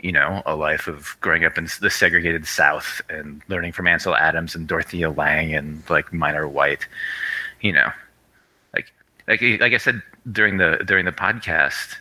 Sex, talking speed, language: male, 175 wpm, English